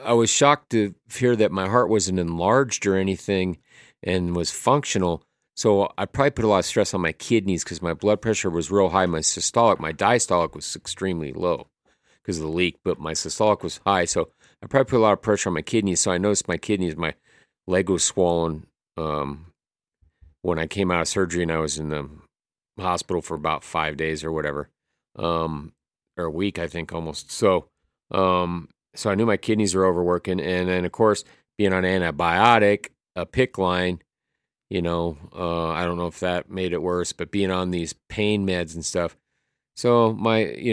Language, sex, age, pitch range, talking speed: English, male, 40-59, 85-105 Hz, 200 wpm